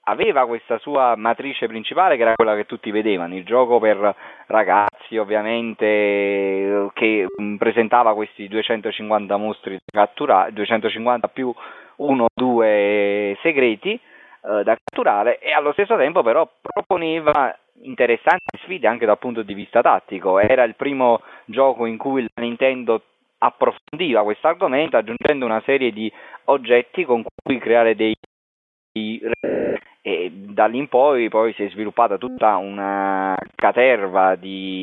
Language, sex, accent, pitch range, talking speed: Italian, male, native, 105-125 Hz, 130 wpm